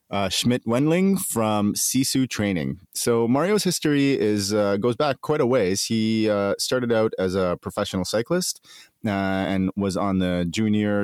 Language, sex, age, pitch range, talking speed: English, male, 30-49, 95-120 Hz, 160 wpm